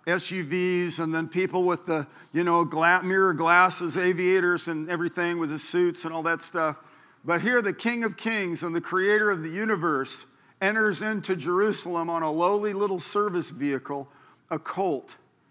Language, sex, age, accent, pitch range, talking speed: English, male, 50-69, American, 170-205 Hz, 165 wpm